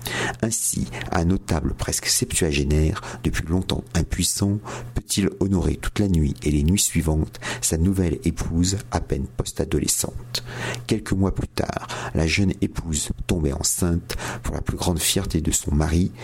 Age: 50-69